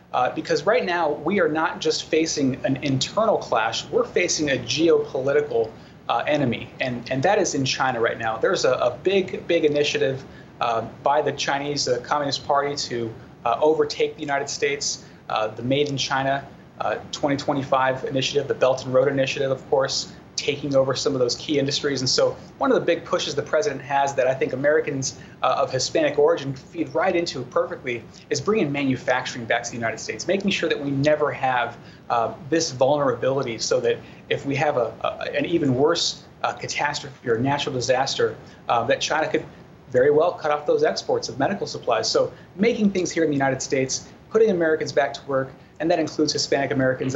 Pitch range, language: 130-175 Hz, English